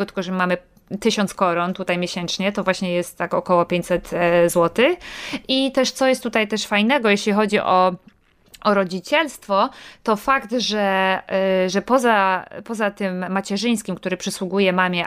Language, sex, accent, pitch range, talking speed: Polish, female, native, 180-210 Hz, 145 wpm